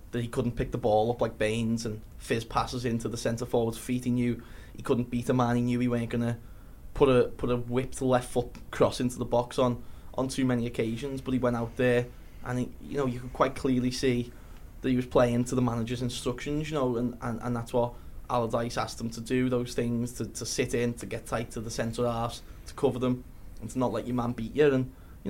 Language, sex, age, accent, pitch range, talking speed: English, male, 10-29, British, 115-125 Hz, 250 wpm